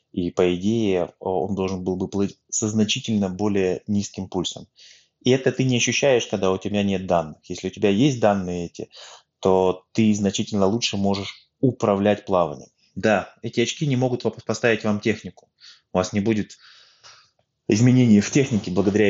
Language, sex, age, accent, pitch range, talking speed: Russian, male, 20-39, native, 90-110 Hz, 165 wpm